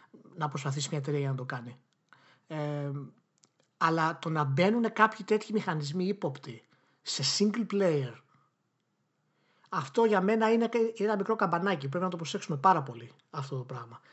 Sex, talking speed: male, 150 wpm